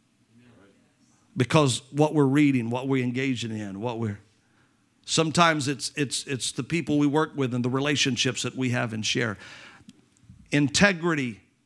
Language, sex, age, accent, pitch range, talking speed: English, male, 50-69, American, 125-160 Hz, 145 wpm